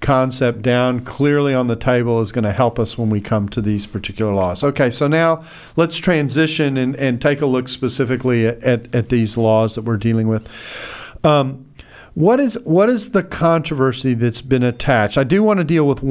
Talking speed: 195 wpm